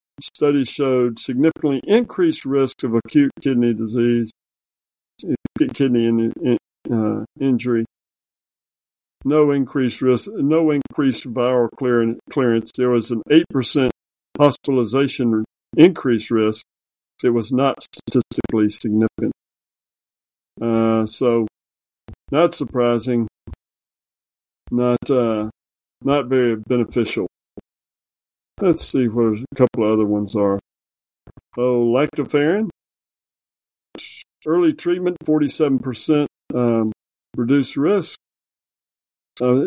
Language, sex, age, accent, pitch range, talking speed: English, male, 50-69, American, 110-135 Hz, 85 wpm